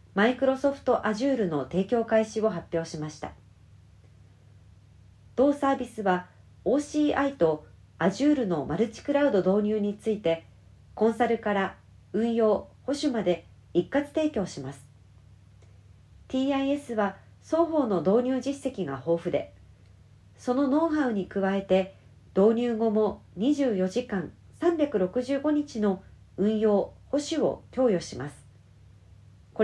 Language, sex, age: Japanese, female, 40-59